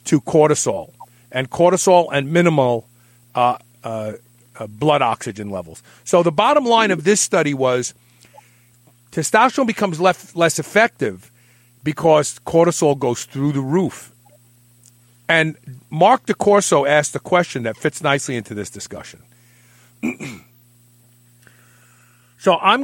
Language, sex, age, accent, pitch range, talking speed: English, male, 50-69, American, 120-170 Hz, 115 wpm